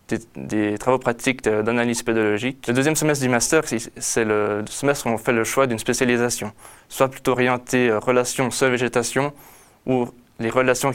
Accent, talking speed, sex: French, 165 wpm, male